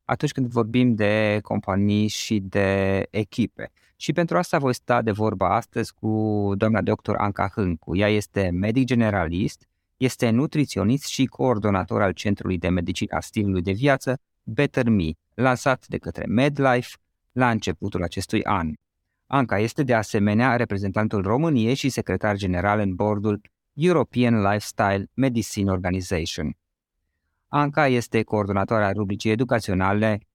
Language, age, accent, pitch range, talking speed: Romanian, 20-39, native, 100-125 Hz, 130 wpm